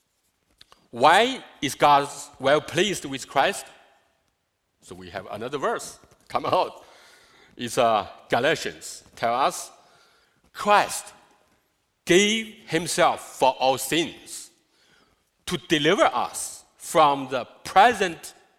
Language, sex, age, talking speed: English, male, 50-69, 100 wpm